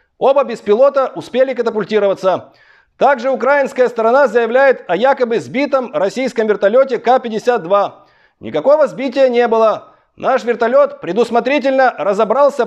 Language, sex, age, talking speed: English, male, 30-49, 115 wpm